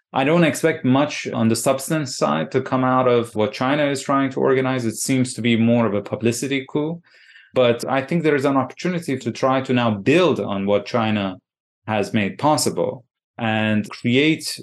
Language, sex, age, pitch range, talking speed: English, male, 30-49, 105-130 Hz, 195 wpm